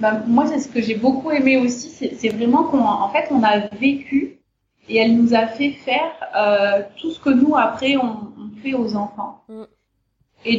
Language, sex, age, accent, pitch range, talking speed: French, female, 30-49, French, 215-260 Hz, 205 wpm